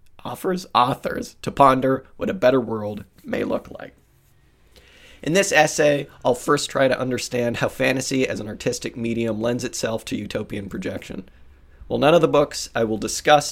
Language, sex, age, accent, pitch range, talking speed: English, male, 30-49, American, 105-130 Hz, 170 wpm